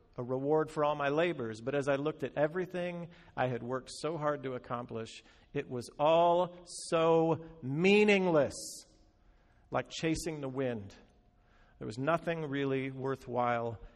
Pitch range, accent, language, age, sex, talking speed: 140-175 Hz, American, English, 50-69, male, 140 wpm